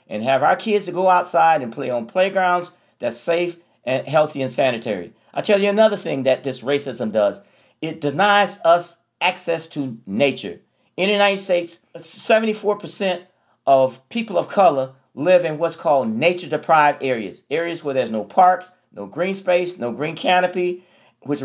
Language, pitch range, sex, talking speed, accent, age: English, 135-185 Hz, male, 165 wpm, American, 50-69